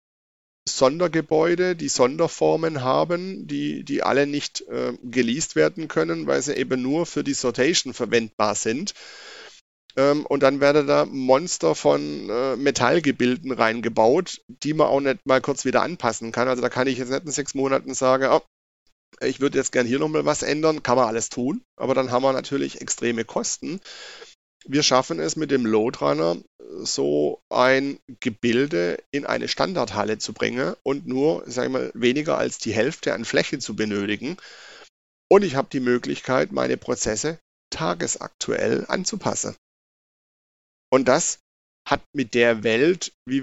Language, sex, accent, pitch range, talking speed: German, male, German, 115-145 Hz, 155 wpm